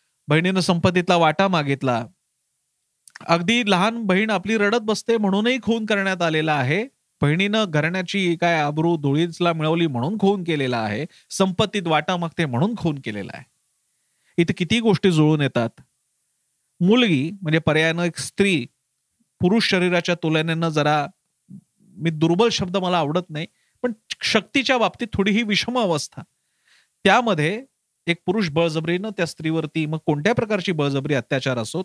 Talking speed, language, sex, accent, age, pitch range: 130 wpm, Marathi, male, native, 40-59, 150-200 Hz